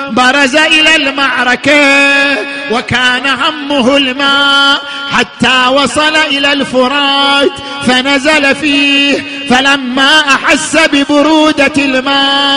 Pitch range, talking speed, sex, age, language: 255-300 Hz, 75 wpm, male, 50-69, Arabic